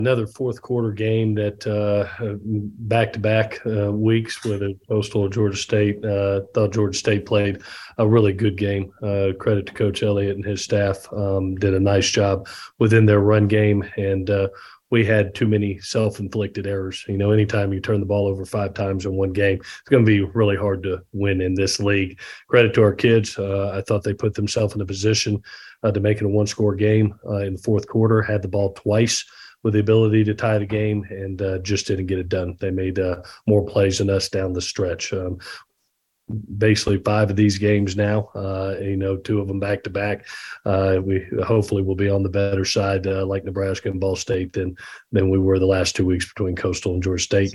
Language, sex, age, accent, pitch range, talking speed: English, male, 40-59, American, 95-105 Hz, 210 wpm